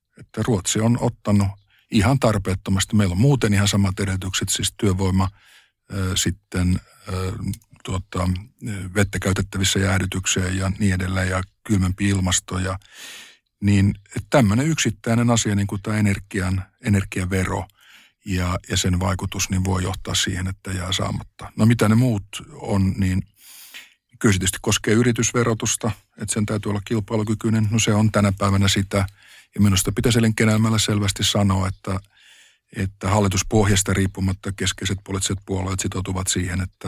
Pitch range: 95-105 Hz